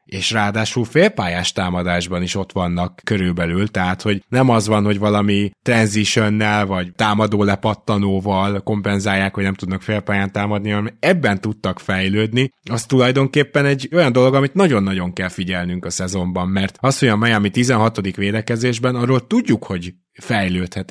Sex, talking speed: male, 145 wpm